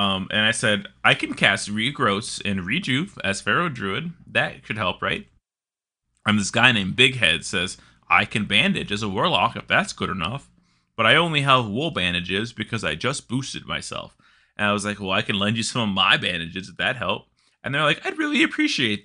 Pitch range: 110-165 Hz